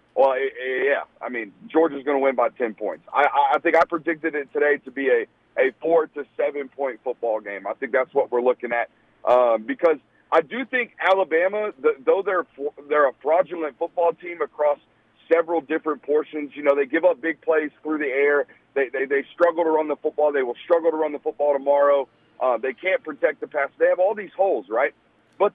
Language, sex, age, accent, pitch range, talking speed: English, male, 40-59, American, 145-200 Hz, 215 wpm